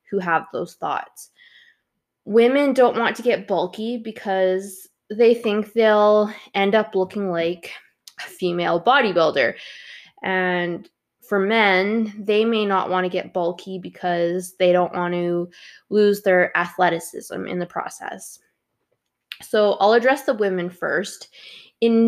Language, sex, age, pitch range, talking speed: English, female, 20-39, 180-225 Hz, 135 wpm